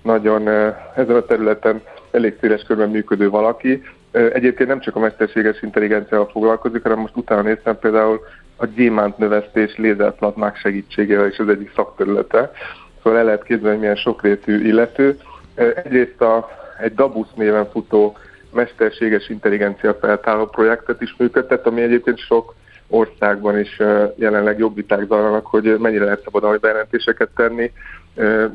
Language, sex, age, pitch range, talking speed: Hungarian, male, 20-39, 105-115 Hz, 130 wpm